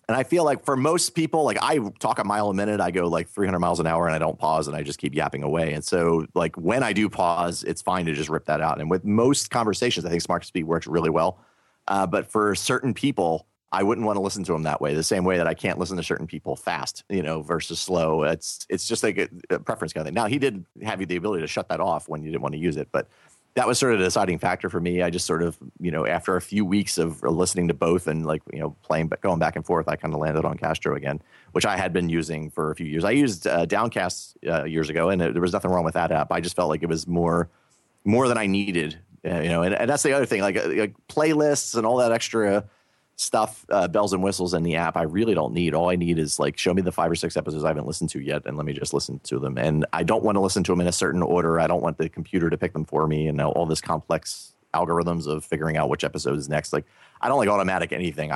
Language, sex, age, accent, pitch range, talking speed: English, male, 30-49, American, 80-105 Hz, 290 wpm